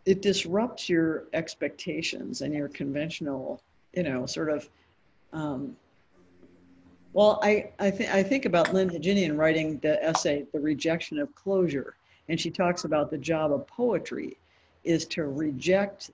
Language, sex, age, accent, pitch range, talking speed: English, female, 60-79, American, 160-205 Hz, 145 wpm